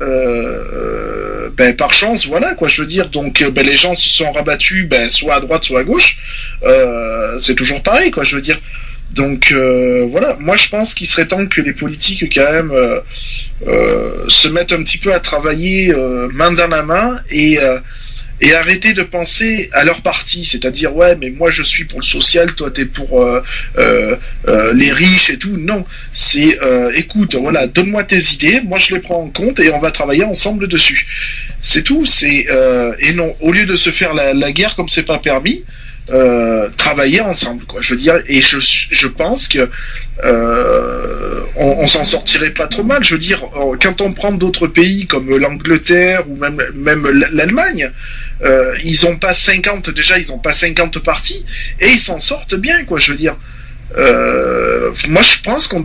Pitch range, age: 140-190 Hz, 20-39